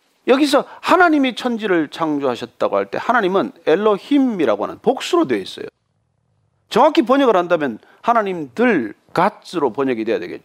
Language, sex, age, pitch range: Japanese, male, 40-59, 200-320 Hz